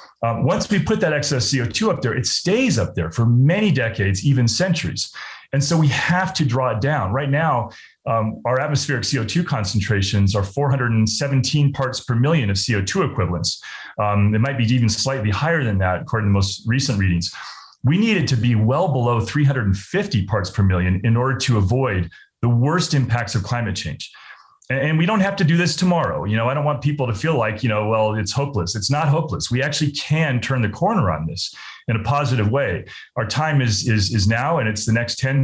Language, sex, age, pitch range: English, male, 30-49, 105-140 Hz